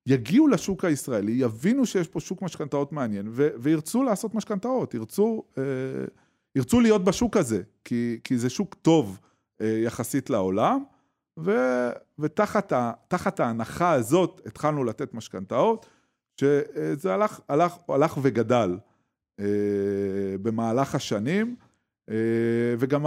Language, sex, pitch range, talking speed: Hebrew, male, 110-160 Hz, 115 wpm